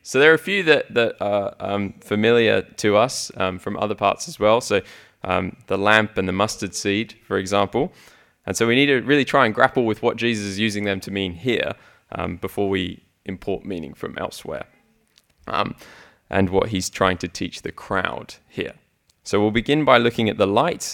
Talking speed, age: 205 wpm, 20-39